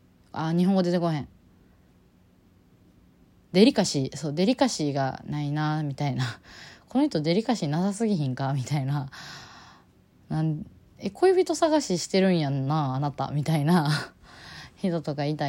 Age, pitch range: 20-39, 125-175 Hz